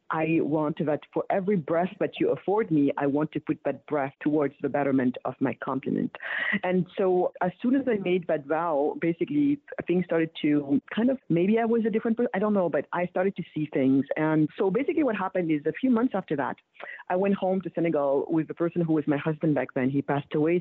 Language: English